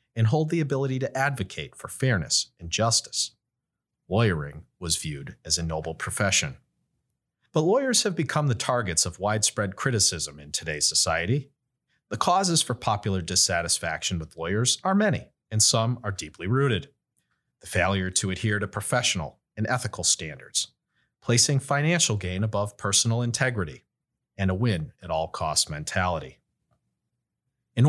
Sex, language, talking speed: male, English, 135 wpm